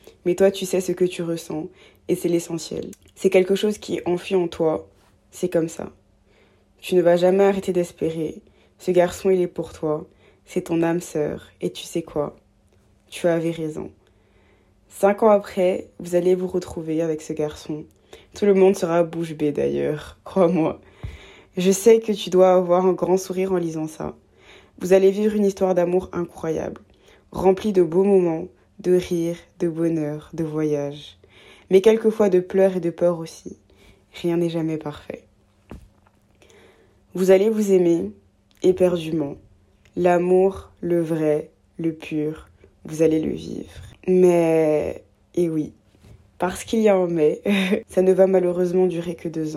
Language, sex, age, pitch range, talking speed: French, female, 20-39, 155-185 Hz, 160 wpm